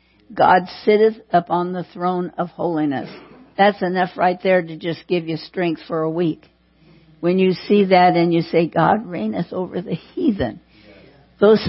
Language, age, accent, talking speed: English, 60-79, American, 165 wpm